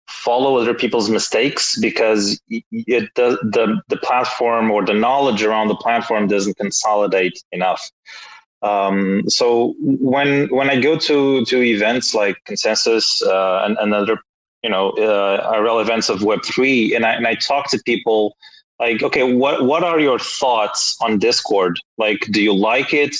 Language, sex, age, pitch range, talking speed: English, male, 20-39, 105-145 Hz, 165 wpm